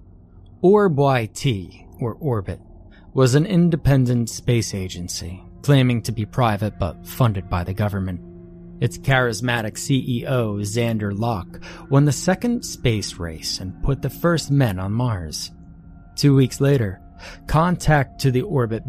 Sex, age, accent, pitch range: male, 30-49, American, 90-135 Hz